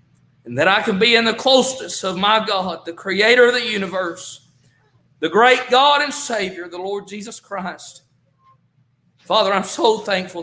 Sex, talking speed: male, 165 wpm